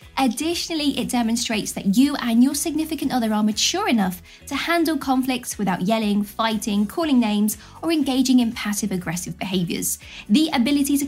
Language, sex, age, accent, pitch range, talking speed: English, female, 20-39, British, 225-280 Hz, 150 wpm